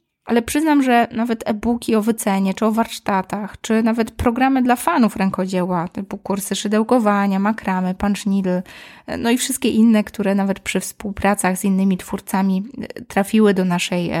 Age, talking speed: 20-39, 150 wpm